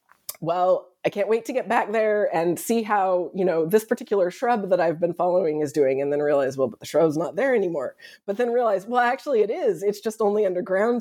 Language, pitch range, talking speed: English, 170-235 Hz, 235 wpm